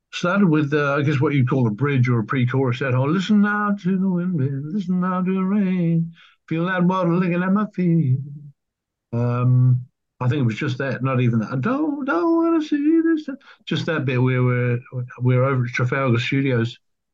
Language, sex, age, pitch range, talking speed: English, male, 60-79, 115-145 Hz, 210 wpm